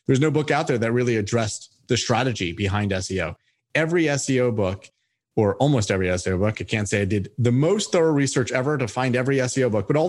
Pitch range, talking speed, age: 105-135 Hz, 220 wpm, 30-49